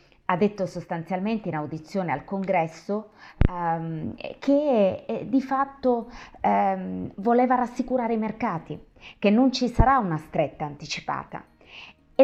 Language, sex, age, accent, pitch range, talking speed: Italian, female, 30-49, native, 160-245 Hz, 110 wpm